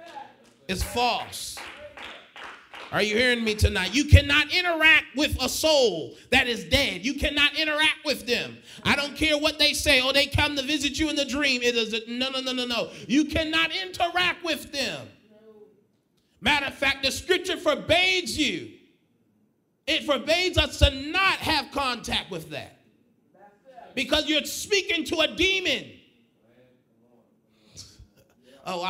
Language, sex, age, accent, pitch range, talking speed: English, male, 30-49, American, 190-310 Hz, 150 wpm